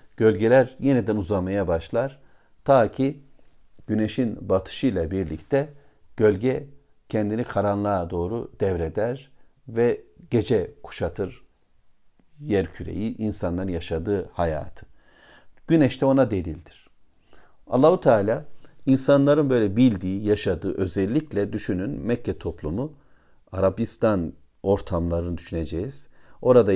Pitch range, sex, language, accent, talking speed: 95-130 Hz, male, Turkish, native, 85 wpm